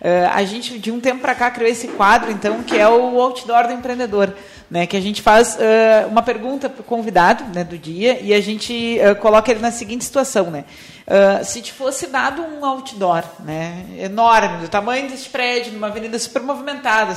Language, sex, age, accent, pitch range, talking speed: Portuguese, female, 30-49, Brazilian, 200-250 Hz, 190 wpm